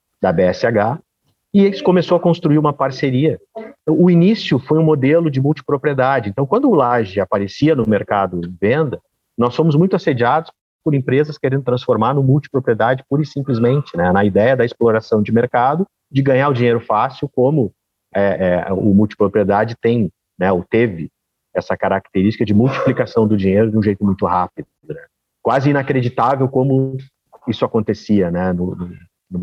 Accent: Brazilian